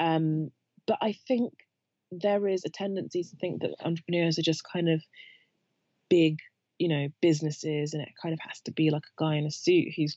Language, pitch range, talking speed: English, 150-170 Hz, 200 wpm